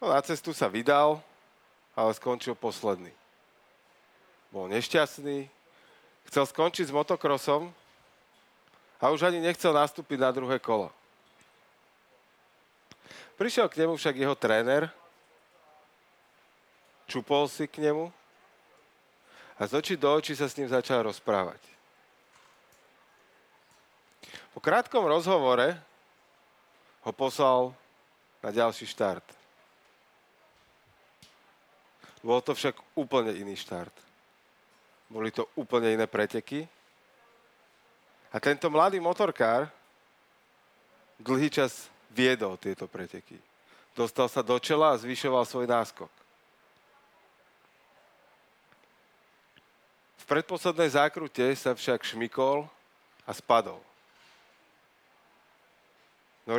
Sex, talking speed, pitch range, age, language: male, 90 wpm, 115-150 Hz, 40-59, Slovak